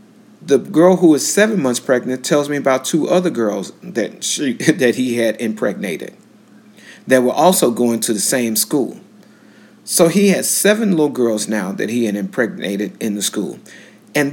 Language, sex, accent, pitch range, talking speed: English, male, American, 115-155 Hz, 175 wpm